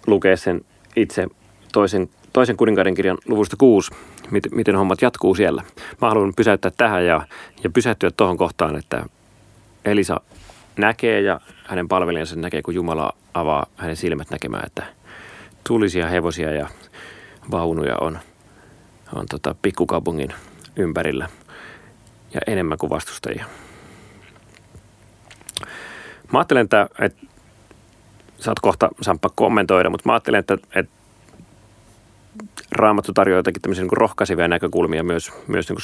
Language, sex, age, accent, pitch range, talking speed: Finnish, male, 30-49, native, 85-110 Hz, 120 wpm